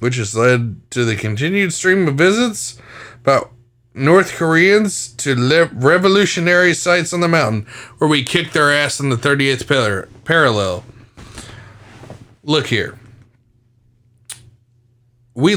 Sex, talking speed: male, 125 wpm